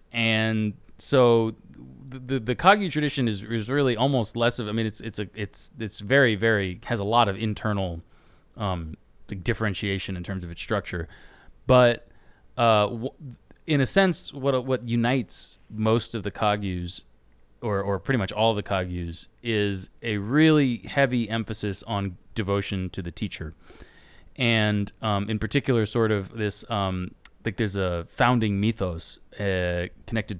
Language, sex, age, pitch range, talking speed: English, male, 30-49, 95-115 Hz, 155 wpm